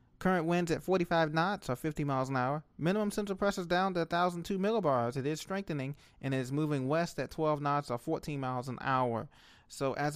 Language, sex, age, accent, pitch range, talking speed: English, male, 30-49, American, 130-170 Hz, 215 wpm